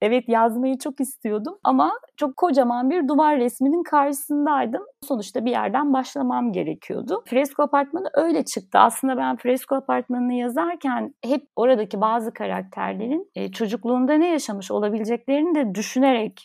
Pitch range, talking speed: 205-285 Hz, 130 wpm